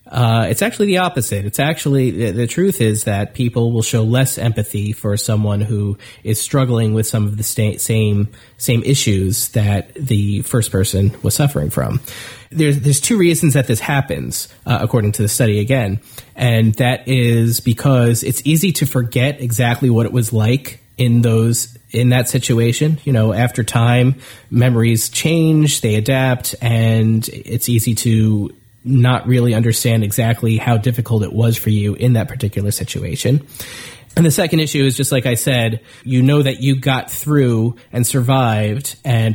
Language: English